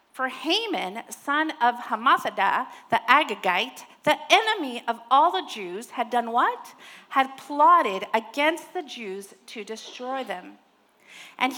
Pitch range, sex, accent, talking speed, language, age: 245-350 Hz, female, American, 130 wpm, English, 40-59